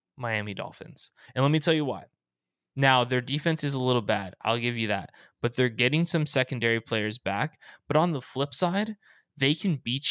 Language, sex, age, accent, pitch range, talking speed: English, male, 20-39, American, 115-140 Hz, 200 wpm